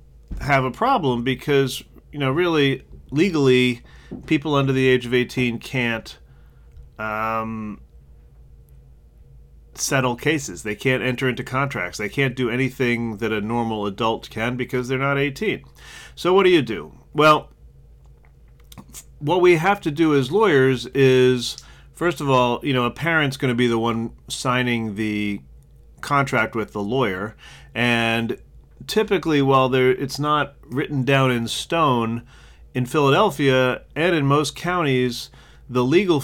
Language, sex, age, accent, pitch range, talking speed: English, male, 30-49, American, 110-135 Hz, 140 wpm